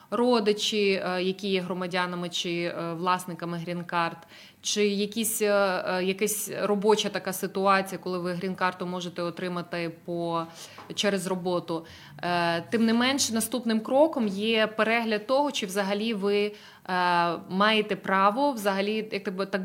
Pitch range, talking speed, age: 180-210 Hz, 115 wpm, 20-39